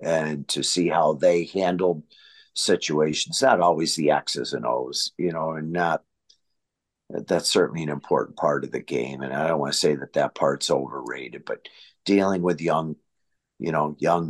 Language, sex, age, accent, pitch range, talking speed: English, male, 50-69, American, 75-90 Hz, 175 wpm